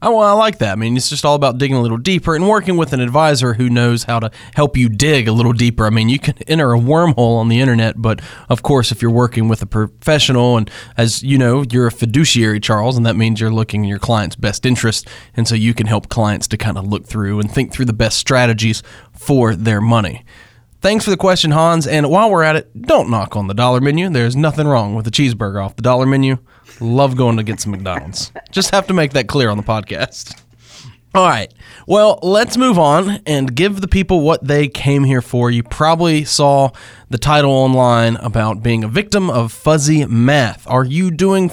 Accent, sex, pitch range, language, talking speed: American, male, 115-155 Hz, English, 230 wpm